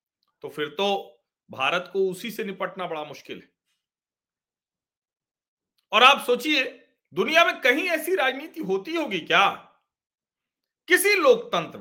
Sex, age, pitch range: male, 50-69, 220-305 Hz